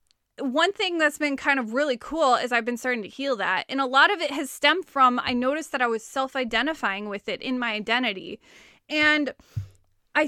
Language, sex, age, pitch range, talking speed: English, female, 20-39, 240-310 Hz, 210 wpm